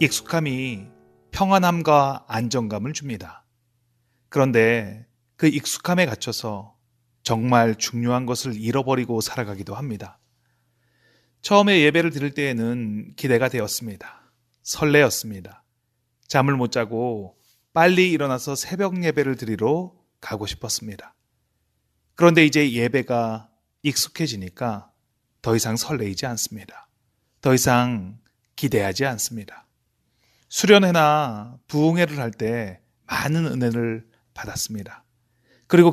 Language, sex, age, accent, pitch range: Korean, male, 30-49, native, 115-145 Hz